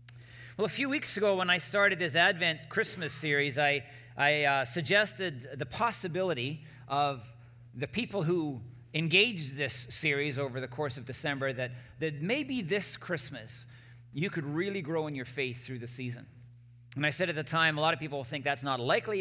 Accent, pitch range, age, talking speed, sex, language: American, 125-165 Hz, 40-59, 185 wpm, male, English